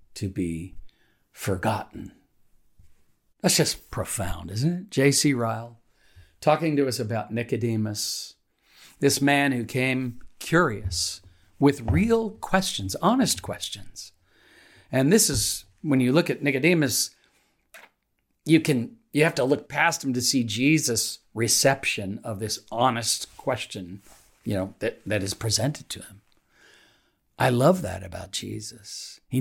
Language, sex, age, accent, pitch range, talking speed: English, male, 50-69, American, 100-130 Hz, 130 wpm